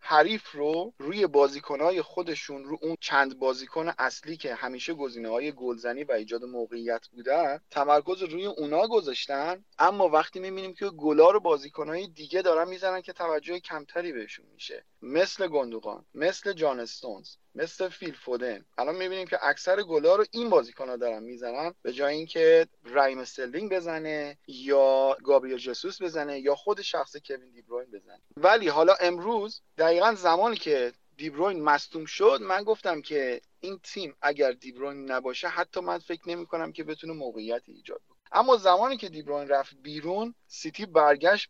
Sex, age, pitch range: male, 30-49, 140-185 Hz